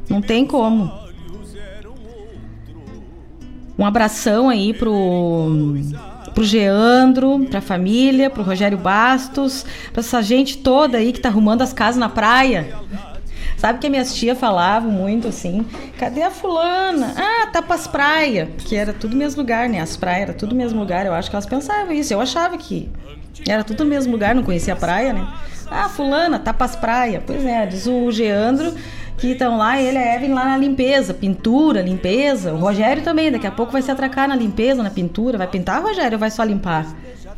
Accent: Brazilian